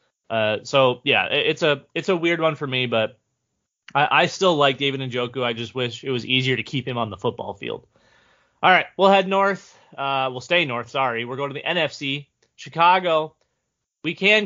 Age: 20-39